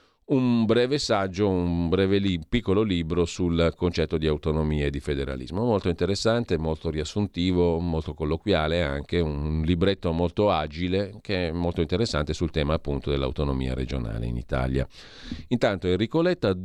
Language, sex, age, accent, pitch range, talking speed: Italian, male, 40-59, native, 80-105 Hz, 145 wpm